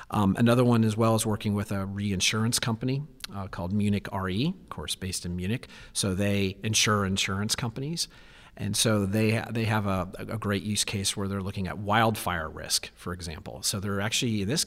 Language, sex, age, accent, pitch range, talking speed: English, male, 40-59, American, 95-115 Hz, 195 wpm